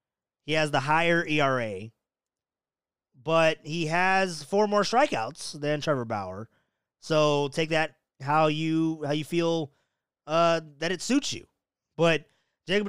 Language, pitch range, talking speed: English, 135-185 Hz, 135 wpm